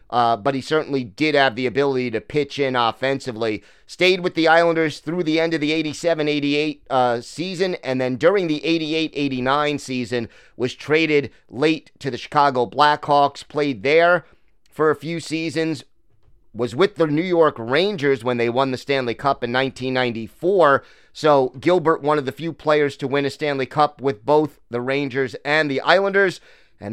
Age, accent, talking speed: 30-49, American, 170 wpm